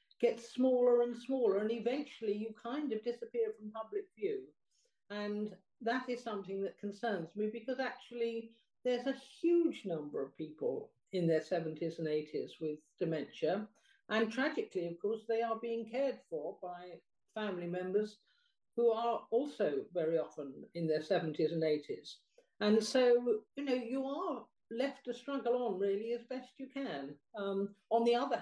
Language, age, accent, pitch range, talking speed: English, 50-69, British, 180-240 Hz, 160 wpm